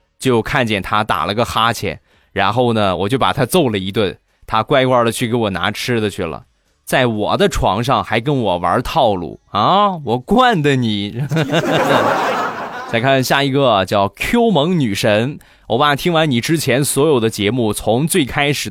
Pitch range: 105-140 Hz